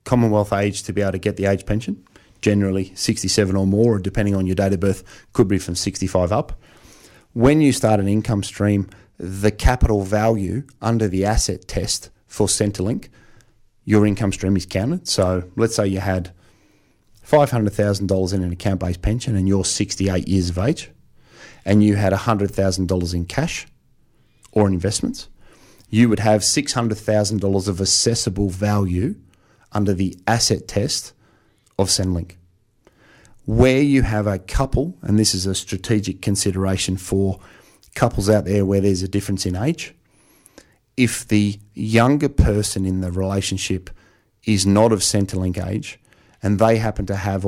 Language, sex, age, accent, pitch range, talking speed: English, male, 30-49, Australian, 95-110 Hz, 150 wpm